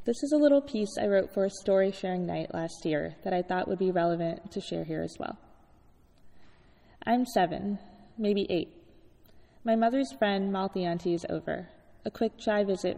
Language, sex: English, female